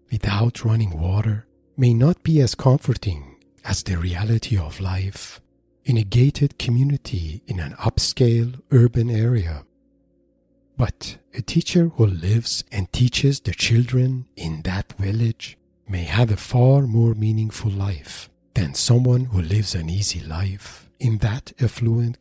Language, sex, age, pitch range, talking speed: English, male, 50-69, 95-125 Hz, 140 wpm